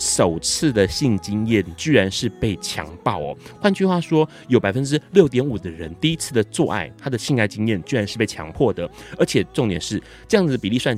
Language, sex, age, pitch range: Chinese, male, 30-49, 100-140 Hz